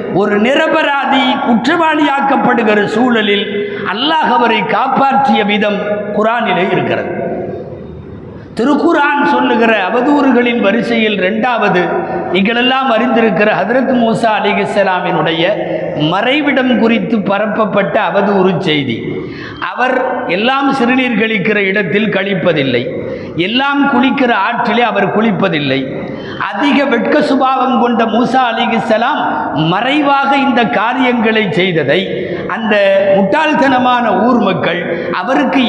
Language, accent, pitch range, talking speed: Tamil, native, 205-260 Hz, 85 wpm